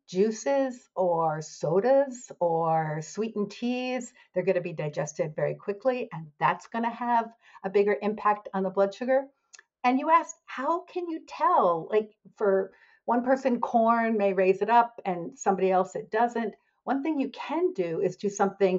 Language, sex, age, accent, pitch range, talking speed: English, female, 50-69, American, 170-235 Hz, 170 wpm